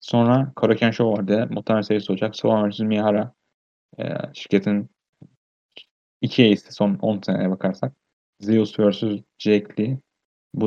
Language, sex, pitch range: Turkish, male, 100-120 Hz